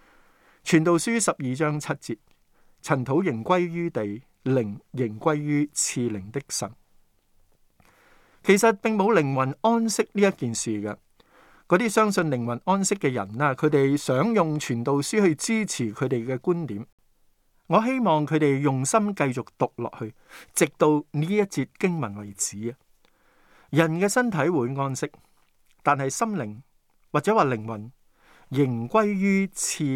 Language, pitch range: Chinese, 125-185 Hz